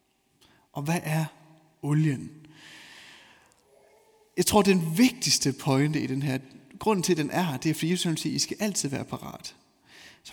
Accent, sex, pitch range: native, male, 145-185 Hz